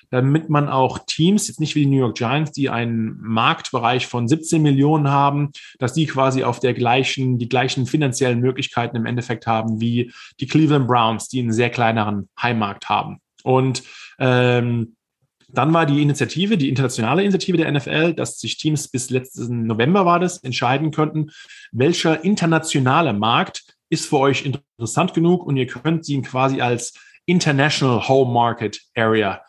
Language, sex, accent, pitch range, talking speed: German, male, German, 120-155 Hz, 165 wpm